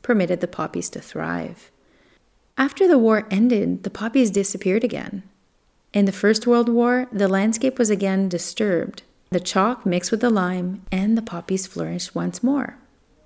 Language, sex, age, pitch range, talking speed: English, female, 30-49, 190-235 Hz, 160 wpm